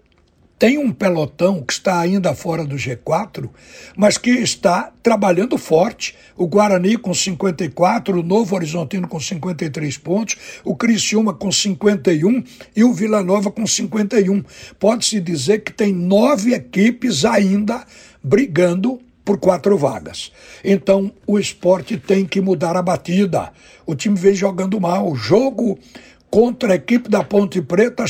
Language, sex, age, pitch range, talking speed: Portuguese, male, 60-79, 180-220 Hz, 140 wpm